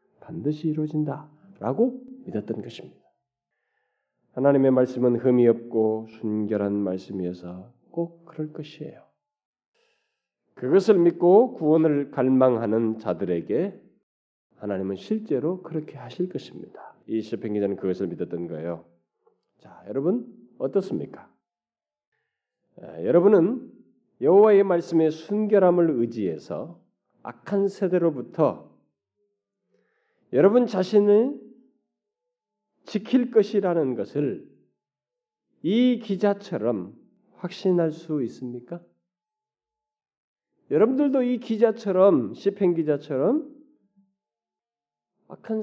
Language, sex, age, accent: Korean, male, 40-59, native